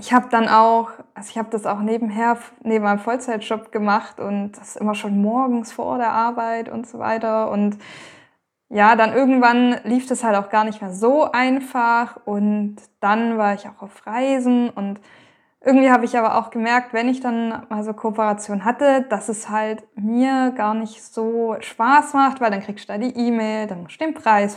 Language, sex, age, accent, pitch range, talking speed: German, female, 20-39, German, 210-245 Hz, 195 wpm